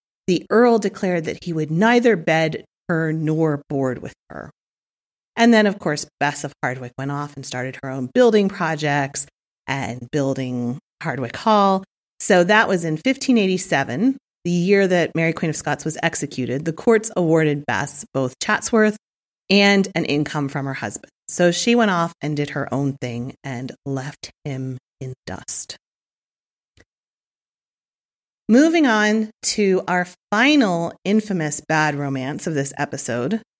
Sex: female